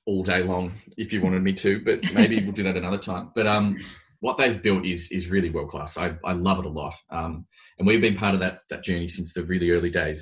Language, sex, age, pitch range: English, male, 20-39, 85-95 Hz